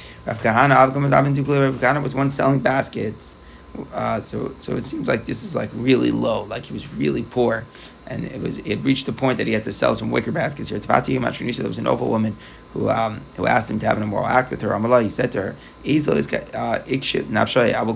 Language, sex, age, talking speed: English, male, 20-39, 205 wpm